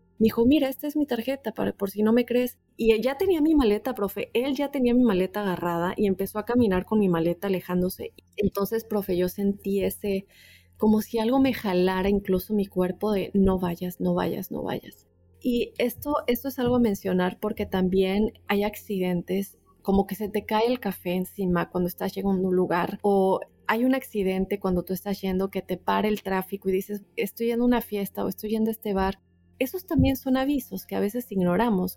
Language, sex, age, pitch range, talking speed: Spanish, female, 30-49, 190-230 Hz, 210 wpm